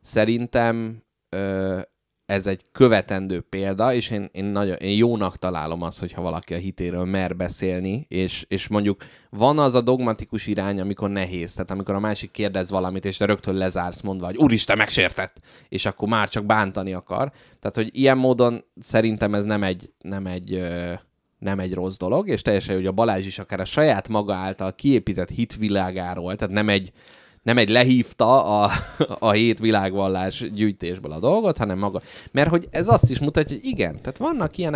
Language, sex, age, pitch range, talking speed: Hungarian, male, 20-39, 95-115 Hz, 175 wpm